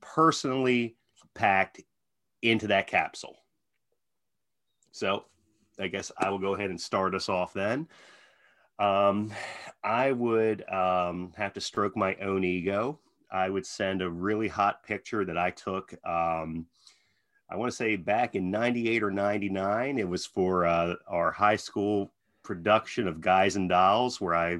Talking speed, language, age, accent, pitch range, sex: 150 wpm, English, 30-49, American, 90-115 Hz, male